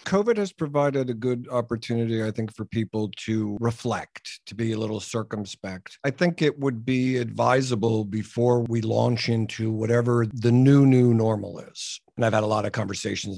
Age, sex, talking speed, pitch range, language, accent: 50-69, male, 180 wpm, 105-140 Hz, English, American